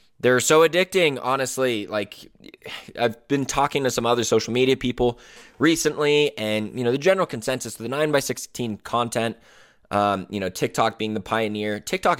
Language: English